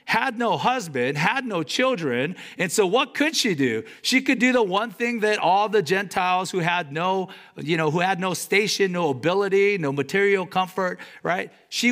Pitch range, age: 170-245 Hz, 50-69